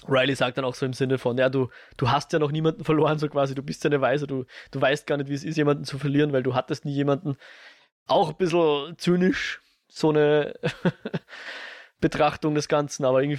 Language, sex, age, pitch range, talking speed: German, male, 20-39, 130-150 Hz, 225 wpm